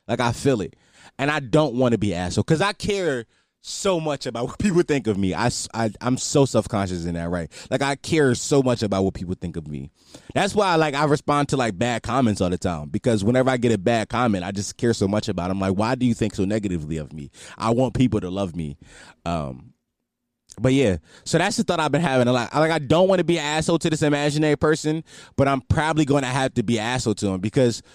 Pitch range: 120-185 Hz